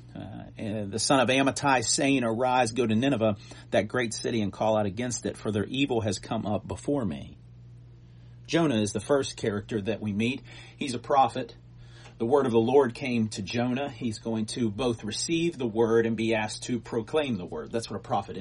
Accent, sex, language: American, male, English